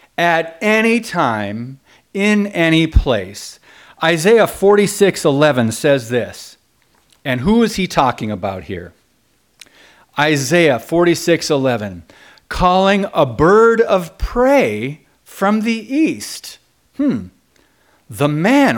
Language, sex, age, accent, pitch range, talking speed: English, male, 40-59, American, 130-195 Hz, 100 wpm